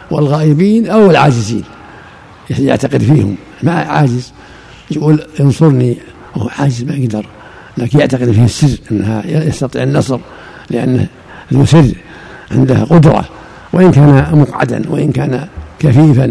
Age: 60-79